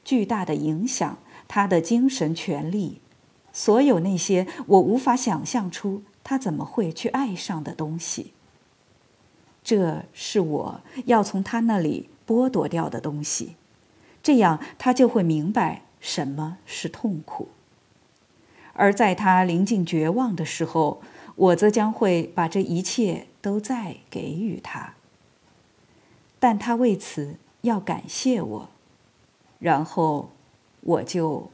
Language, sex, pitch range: Chinese, female, 170-240 Hz